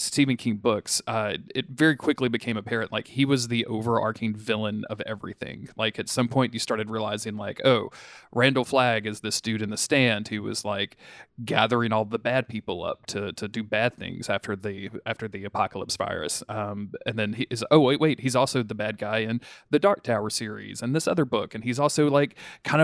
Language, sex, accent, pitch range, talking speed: English, male, American, 110-130 Hz, 215 wpm